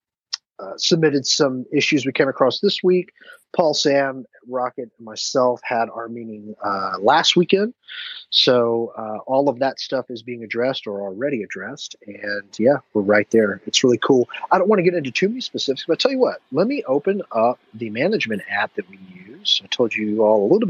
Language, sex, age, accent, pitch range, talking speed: English, male, 30-49, American, 110-160 Hz, 200 wpm